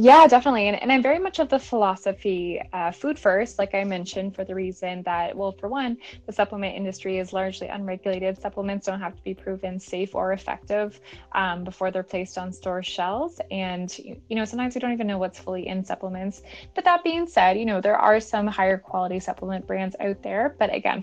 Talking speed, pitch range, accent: 210 wpm, 190-235 Hz, American